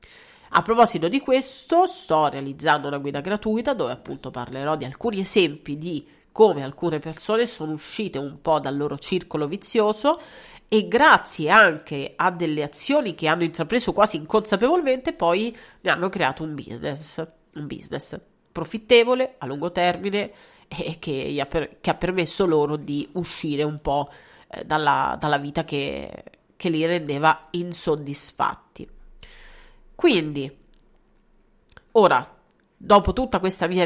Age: 40-59